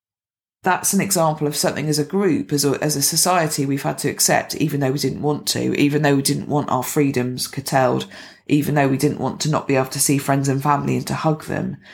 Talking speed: 240 wpm